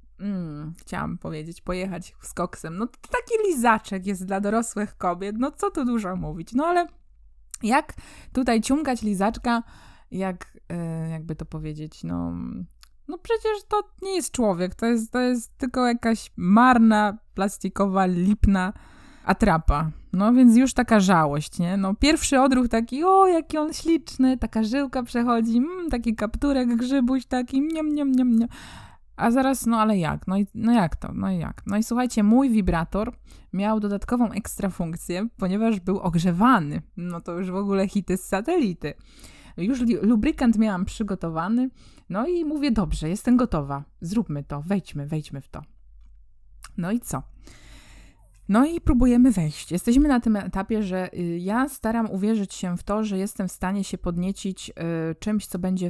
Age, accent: 20-39, native